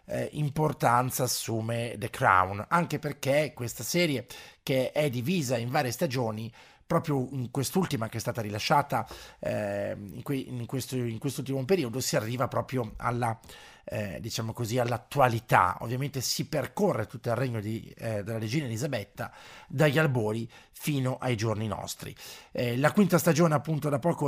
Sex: male